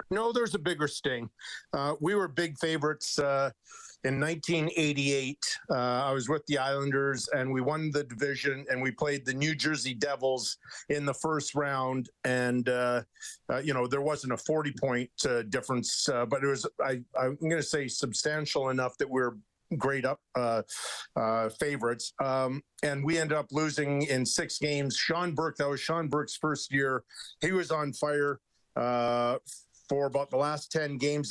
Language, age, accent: English, 50-69, American